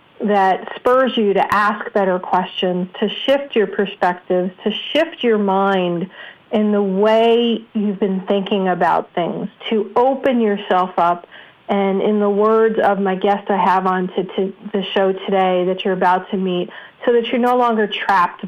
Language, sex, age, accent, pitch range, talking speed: English, female, 40-59, American, 190-225 Hz, 170 wpm